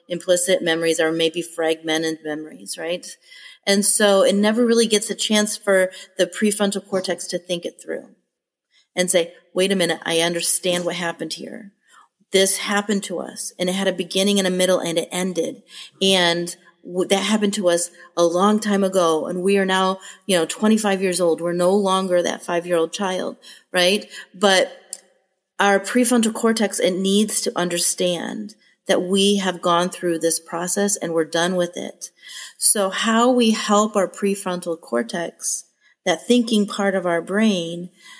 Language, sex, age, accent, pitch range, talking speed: English, female, 40-59, American, 175-205 Hz, 170 wpm